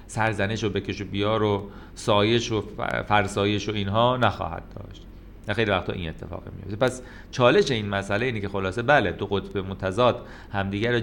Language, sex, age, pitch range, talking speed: Persian, male, 30-49, 90-110 Hz, 180 wpm